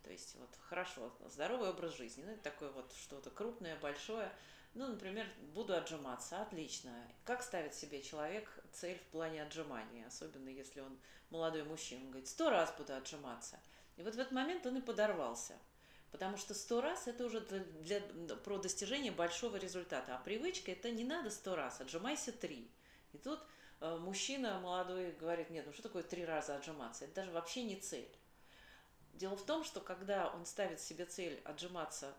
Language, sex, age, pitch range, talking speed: Russian, female, 40-59, 160-225 Hz, 175 wpm